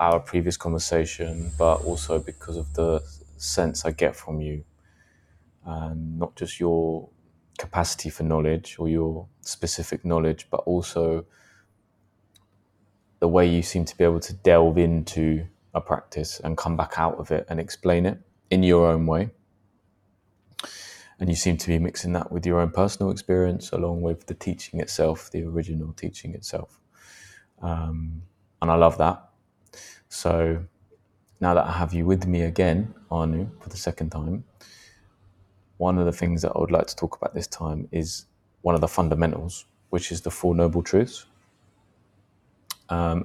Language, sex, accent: English, male, British